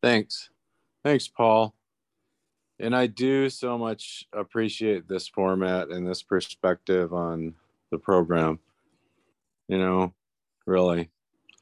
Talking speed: 105 wpm